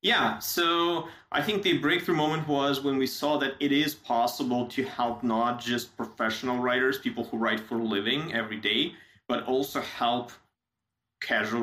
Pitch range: 115-130 Hz